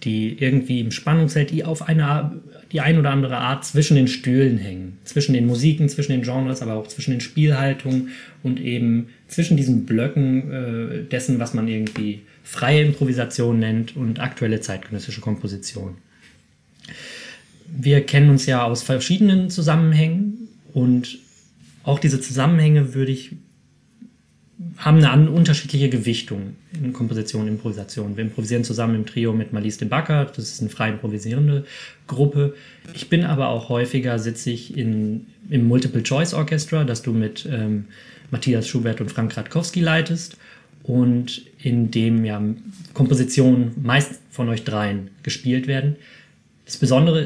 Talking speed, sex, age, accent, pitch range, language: 140 wpm, male, 20-39, German, 115-145 Hz, German